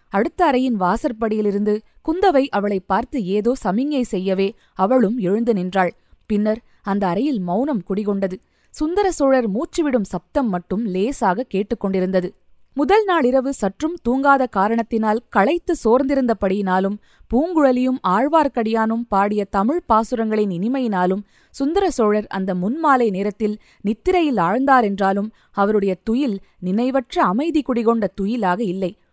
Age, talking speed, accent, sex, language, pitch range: 20-39, 100 wpm, native, female, Tamil, 200-260 Hz